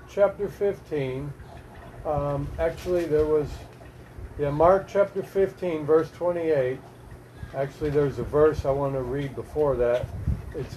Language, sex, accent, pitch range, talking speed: English, male, American, 135-185 Hz, 130 wpm